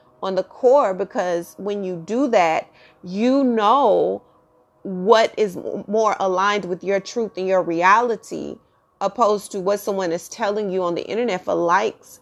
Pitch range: 175-205 Hz